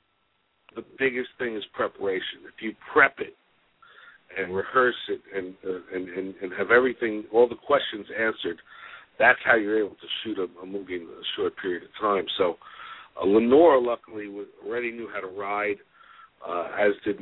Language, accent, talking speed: English, American, 180 wpm